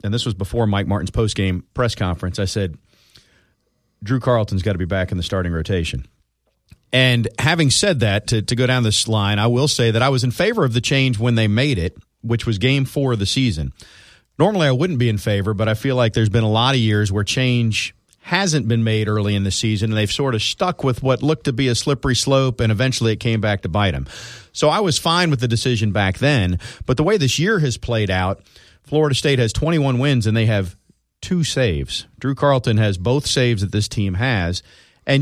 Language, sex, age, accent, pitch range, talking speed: English, male, 40-59, American, 100-130 Hz, 230 wpm